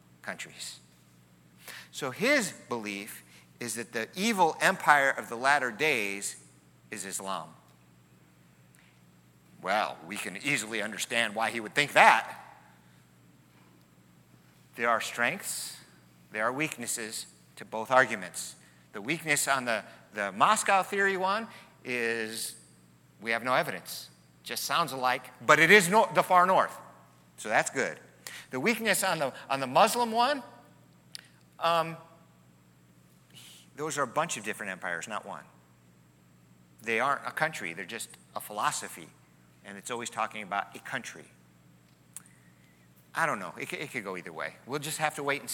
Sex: male